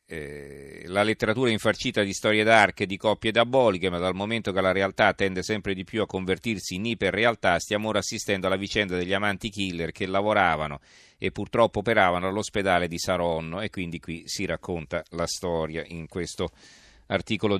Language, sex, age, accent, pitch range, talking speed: Italian, male, 40-59, native, 95-115 Hz, 170 wpm